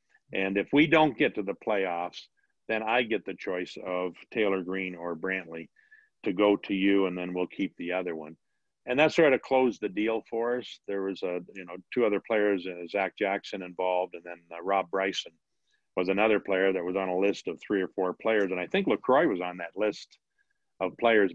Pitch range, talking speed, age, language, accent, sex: 95-120 Hz, 215 wpm, 50-69, English, American, male